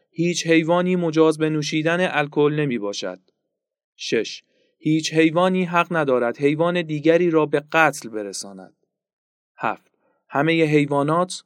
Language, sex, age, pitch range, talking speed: Persian, male, 30-49, 130-165 Hz, 120 wpm